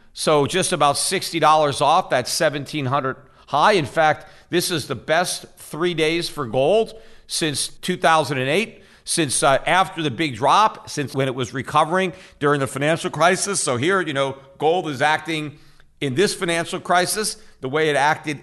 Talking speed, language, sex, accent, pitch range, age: 165 wpm, English, male, American, 135-180 Hz, 50-69